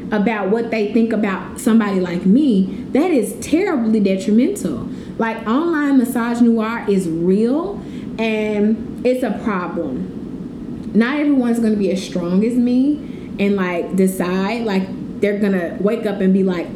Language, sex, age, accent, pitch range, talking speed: English, female, 20-39, American, 190-245 Hz, 145 wpm